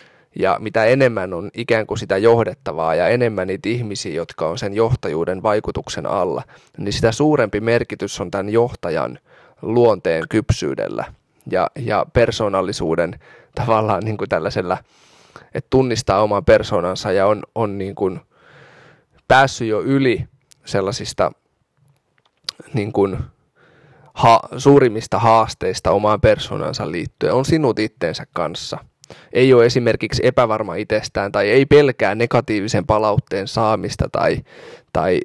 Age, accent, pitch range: 20-39, native, 100-125 Hz